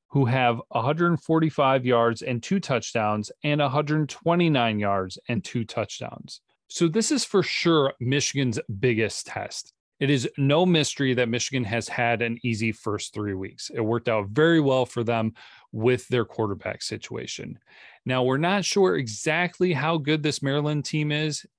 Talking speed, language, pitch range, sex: 155 wpm, English, 115-150 Hz, male